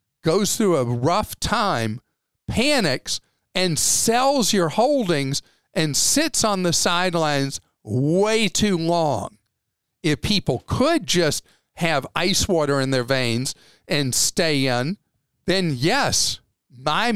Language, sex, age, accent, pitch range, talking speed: English, male, 50-69, American, 135-200 Hz, 120 wpm